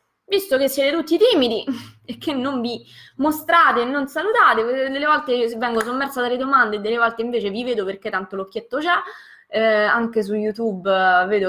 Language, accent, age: Italian, native, 20-39